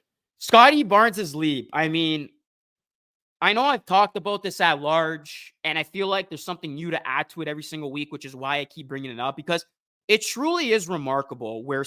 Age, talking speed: 20-39, 205 wpm